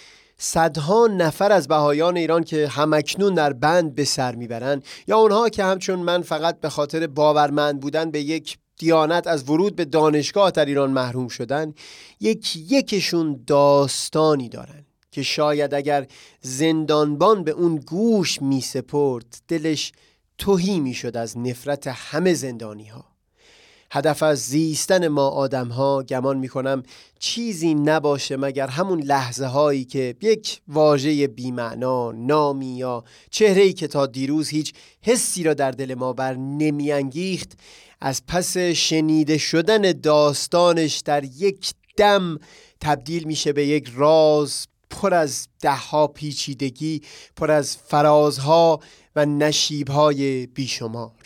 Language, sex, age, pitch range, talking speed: Persian, male, 30-49, 135-165 Hz, 130 wpm